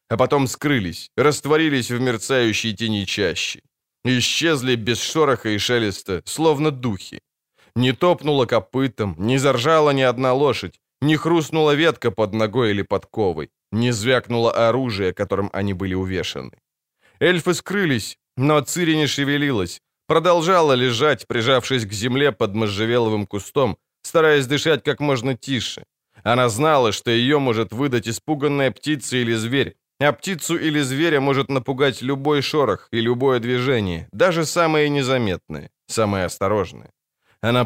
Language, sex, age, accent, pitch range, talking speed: Ukrainian, male, 20-39, native, 110-145 Hz, 135 wpm